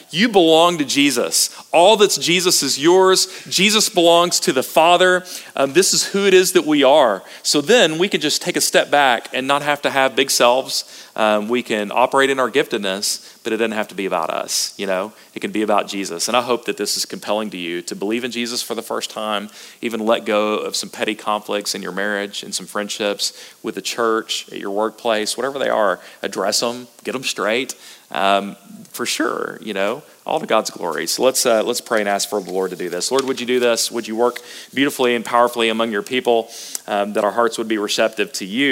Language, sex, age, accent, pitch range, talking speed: English, male, 40-59, American, 105-135 Hz, 235 wpm